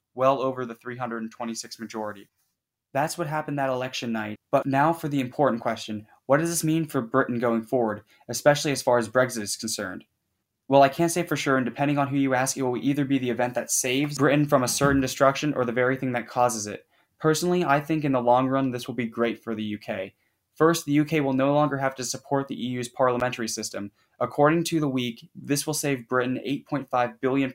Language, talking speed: English, 220 wpm